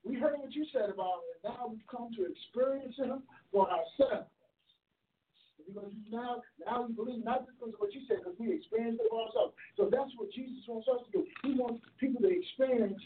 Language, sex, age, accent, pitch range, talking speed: English, male, 50-69, American, 205-255 Hz, 215 wpm